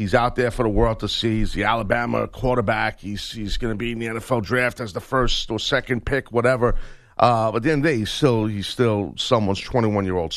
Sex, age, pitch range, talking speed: male, 50-69, 105-130 Hz, 255 wpm